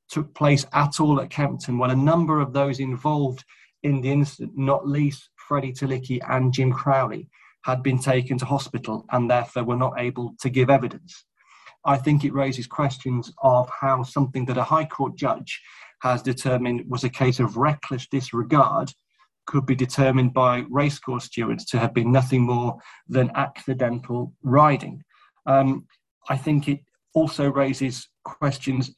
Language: English